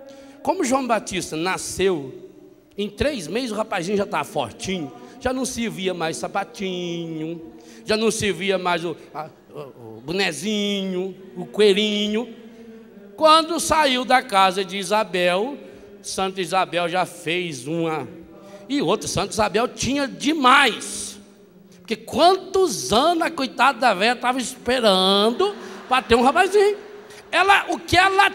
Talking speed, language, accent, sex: 130 wpm, Portuguese, Brazilian, male